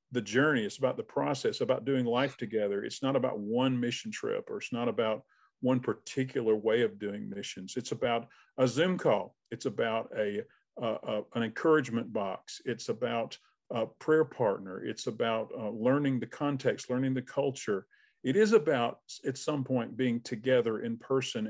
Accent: American